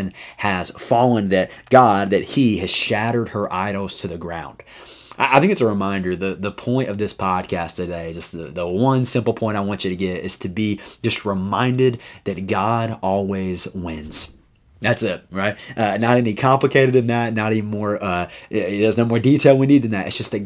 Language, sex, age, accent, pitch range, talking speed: English, male, 20-39, American, 95-115 Hz, 200 wpm